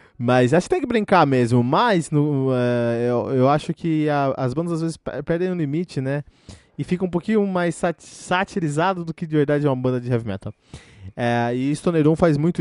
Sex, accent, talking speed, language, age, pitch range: male, Brazilian, 230 wpm, Portuguese, 20-39, 115-170 Hz